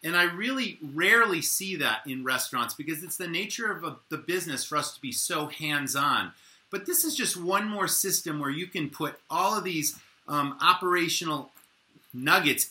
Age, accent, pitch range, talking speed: 30-49, American, 135-180 Hz, 185 wpm